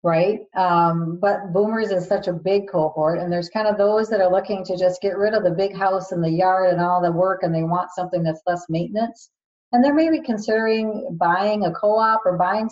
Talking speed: 225 wpm